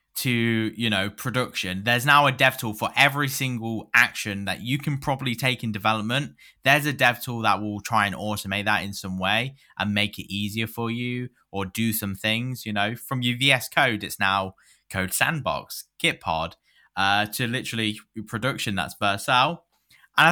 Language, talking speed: English, 180 wpm